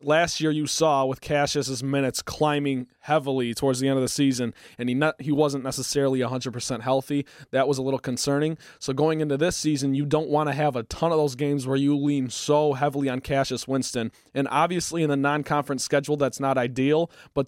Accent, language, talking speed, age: American, English, 210 wpm, 20-39